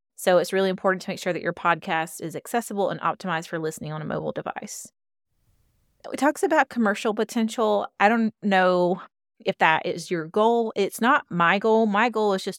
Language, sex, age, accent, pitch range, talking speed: English, female, 30-49, American, 165-210 Hz, 195 wpm